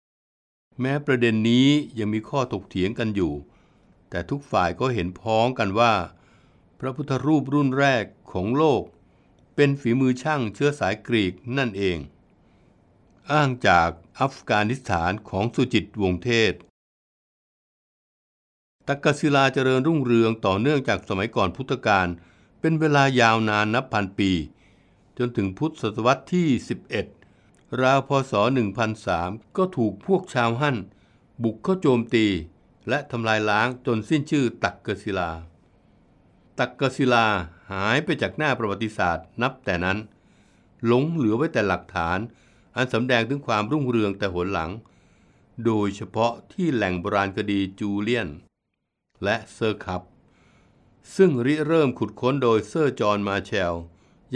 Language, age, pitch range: Thai, 60-79, 100-135 Hz